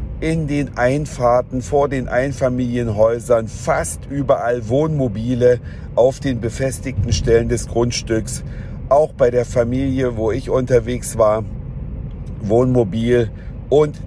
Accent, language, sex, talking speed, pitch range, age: German, German, male, 105 wpm, 110-130 Hz, 50-69